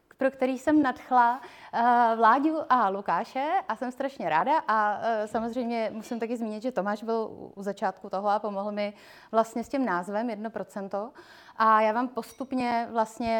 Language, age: Czech, 30-49